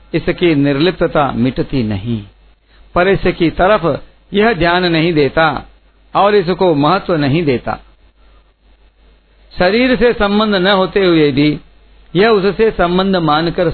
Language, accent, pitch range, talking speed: Hindi, native, 140-185 Hz, 120 wpm